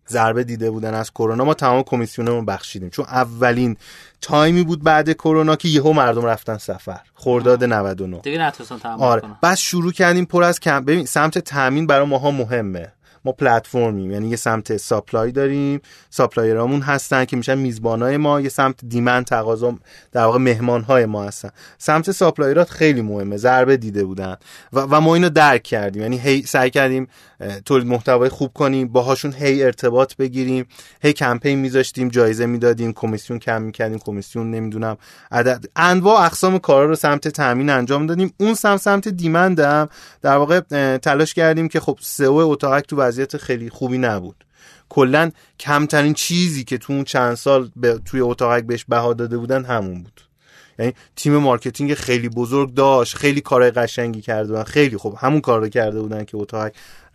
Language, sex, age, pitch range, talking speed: Persian, male, 30-49, 115-145 Hz, 160 wpm